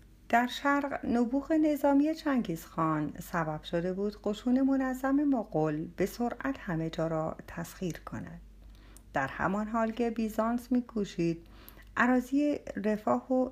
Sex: female